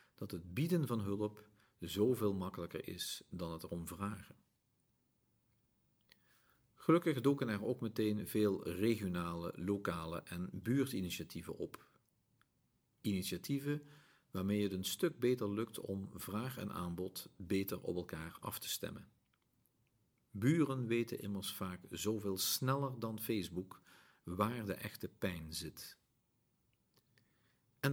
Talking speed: 115 wpm